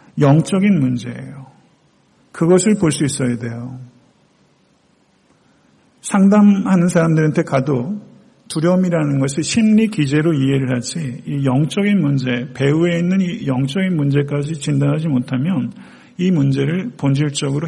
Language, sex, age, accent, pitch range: Korean, male, 50-69, native, 135-175 Hz